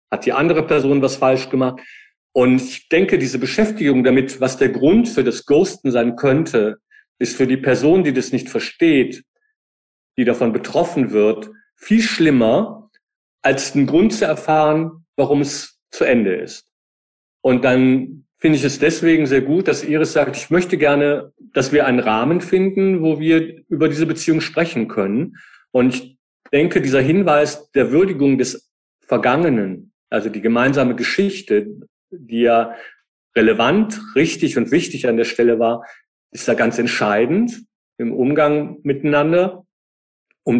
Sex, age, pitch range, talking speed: male, 40-59, 125-165 Hz, 150 wpm